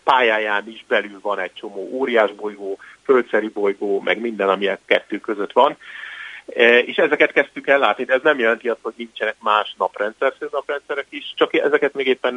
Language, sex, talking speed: Hungarian, male, 170 wpm